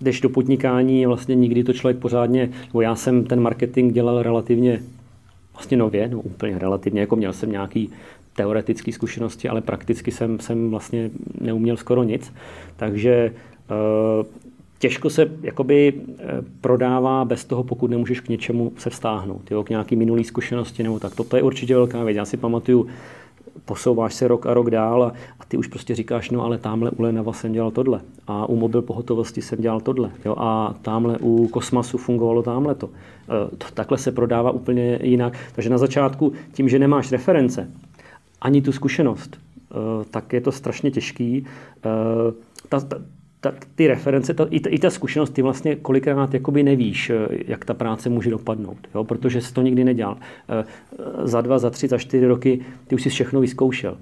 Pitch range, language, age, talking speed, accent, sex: 115-130 Hz, Czech, 30-49, 170 wpm, native, male